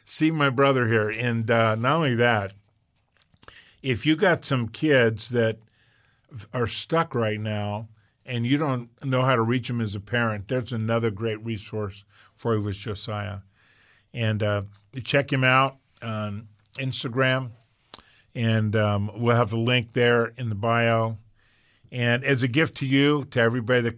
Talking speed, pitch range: 165 wpm, 110-130 Hz